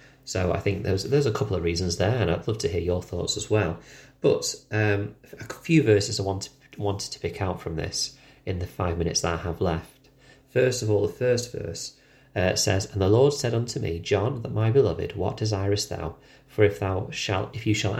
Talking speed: 225 wpm